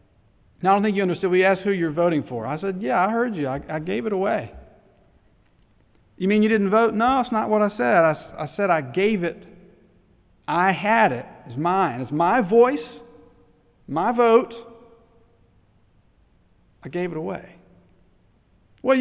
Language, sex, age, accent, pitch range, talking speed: English, male, 40-59, American, 140-210 Hz, 175 wpm